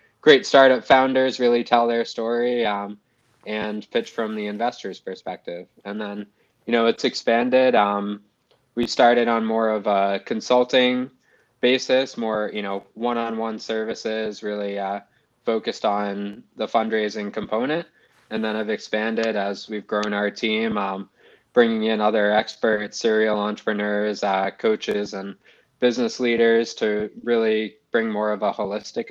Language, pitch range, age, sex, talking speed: English, 100-120 Hz, 20-39, male, 140 wpm